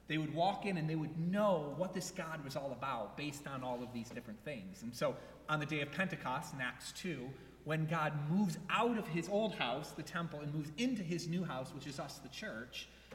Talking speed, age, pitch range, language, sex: 235 wpm, 30-49, 125-170 Hz, English, male